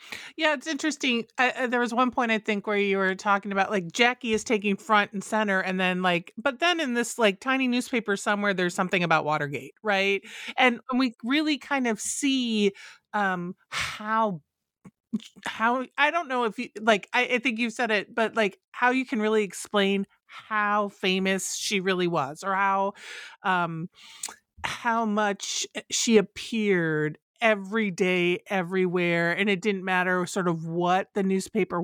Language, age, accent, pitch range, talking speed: English, 30-49, American, 190-240 Hz, 170 wpm